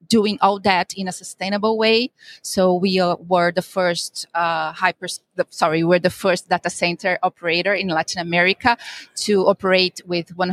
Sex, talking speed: female, 165 wpm